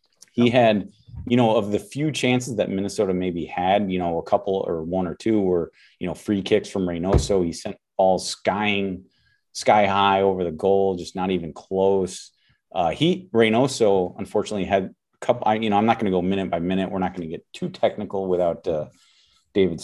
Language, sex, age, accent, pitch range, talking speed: English, male, 30-49, American, 95-115 Hz, 205 wpm